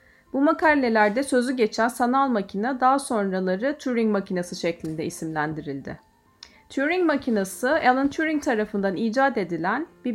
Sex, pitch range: female, 205-275 Hz